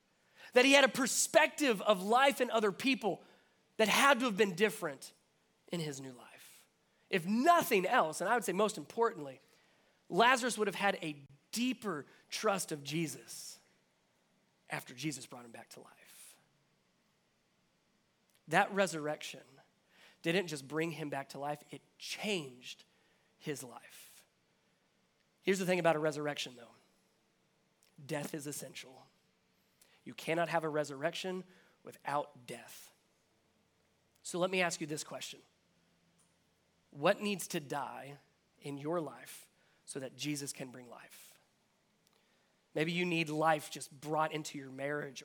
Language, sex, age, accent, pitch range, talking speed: English, male, 30-49, American, 145-190 Hz, 140 wpm